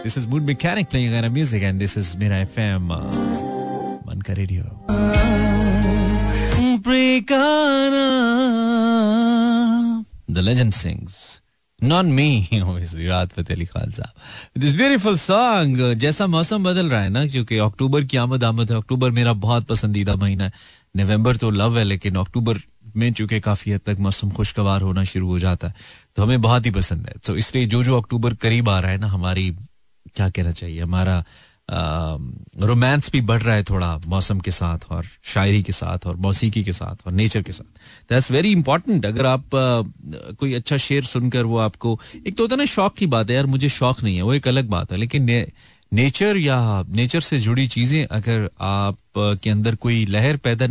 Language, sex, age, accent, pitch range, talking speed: Hindi, male, 30-49, native, 100-130 Hz, 160 wpm